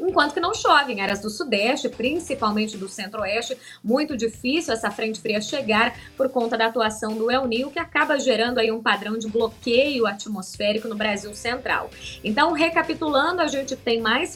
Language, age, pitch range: Portuguese, 20-39, 220-275 Hz